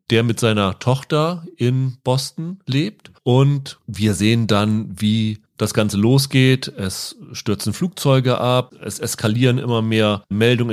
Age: 30-49